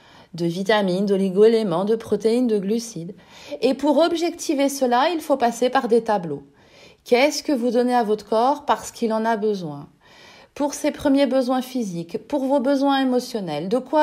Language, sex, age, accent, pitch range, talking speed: French, female, 40-59, French, 220-290 Hz, 170 wpm